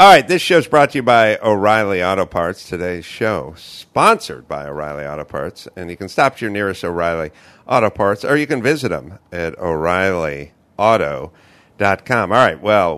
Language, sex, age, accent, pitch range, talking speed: English, male, 50-69, American, 85-120 Hz, 180 wpm